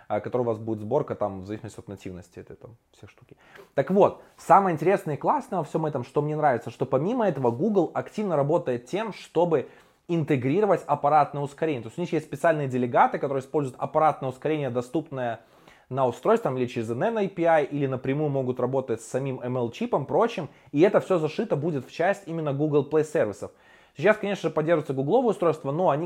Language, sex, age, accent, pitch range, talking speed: Russian, male, 20-39, native, 130-165 Hz, 190 wpm